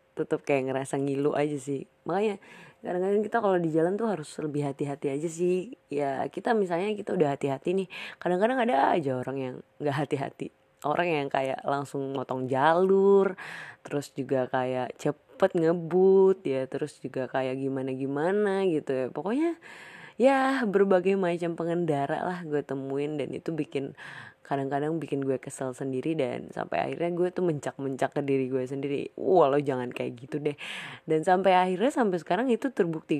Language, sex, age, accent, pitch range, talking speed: Indonesian, female, 20-39, native, 135-180 Hz, 160 wpm